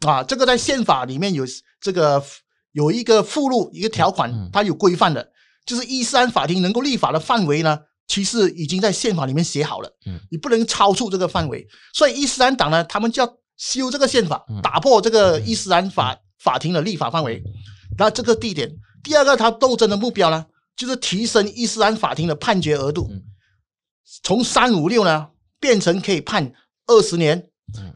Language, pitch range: Chinese, 145-220 Hz